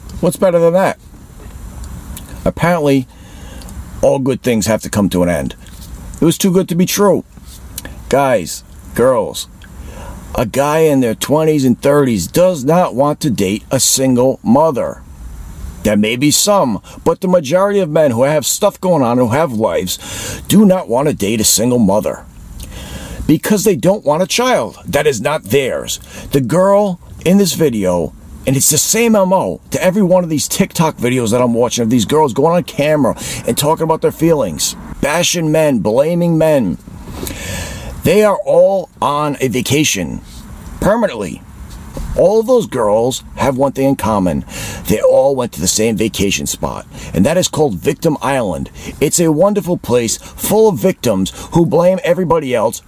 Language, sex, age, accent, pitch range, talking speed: English, male, 50-69, American, 110-180 Hz, 170 wpm